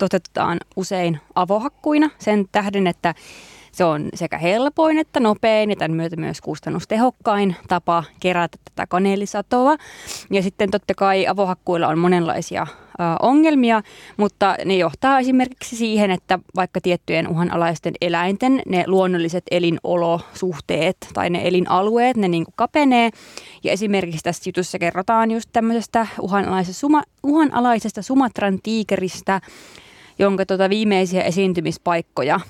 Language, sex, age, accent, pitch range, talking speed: Finnish, female, 20-39, native, 180-225 Hz, 115 wpm